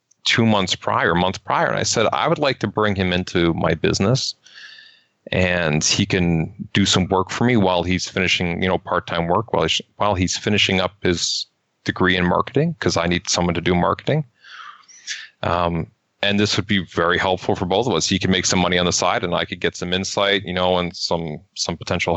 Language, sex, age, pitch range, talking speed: English, male, 30-49, 90-105 Hz, 220 wpm